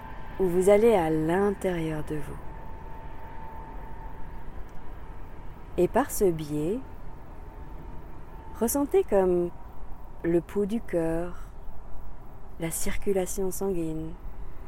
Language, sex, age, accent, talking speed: French, female, 40-59, French, 80 wpm